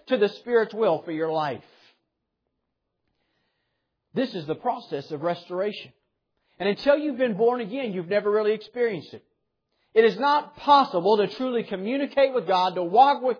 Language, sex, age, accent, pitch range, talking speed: English, male, 40-59, American, 185-255 Hz, 160 wpm